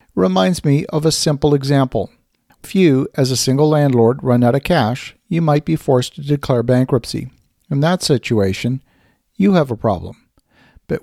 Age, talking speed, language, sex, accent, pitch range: 50-69, 165 wpm, English, male, American, 125-155 Hz